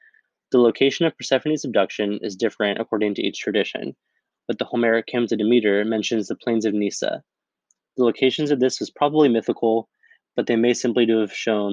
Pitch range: 105-120 Hz